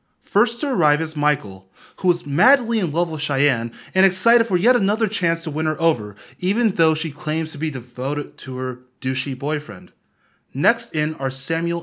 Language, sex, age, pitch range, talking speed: English, male, 20-39, 135-180 Hz, 190 wpm